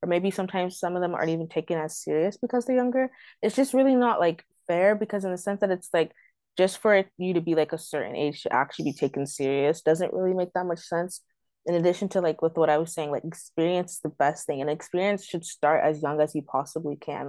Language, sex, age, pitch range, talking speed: English, female, 20-39, 145-180 Hz, 245 wpm